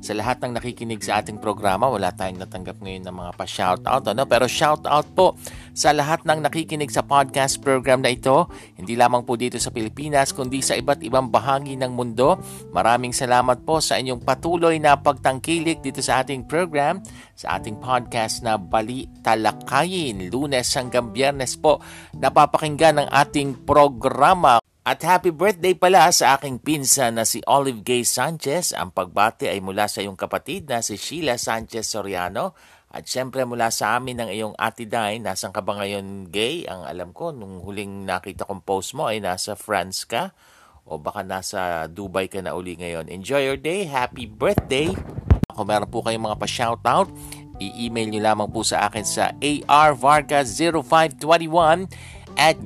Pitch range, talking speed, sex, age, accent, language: 105-145 Hz, 165 wpm, male, 50-69, native, Filipino